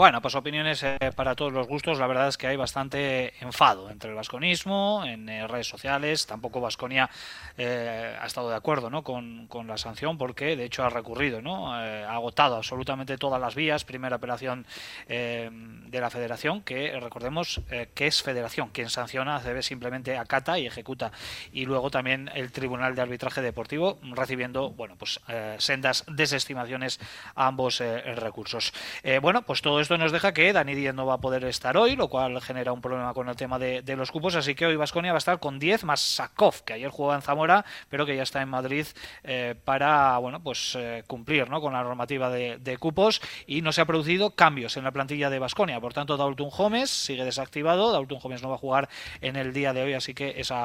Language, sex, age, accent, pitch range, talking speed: Spanish, male, 20-39, Spanish, 125-145 Hz, 210 wpm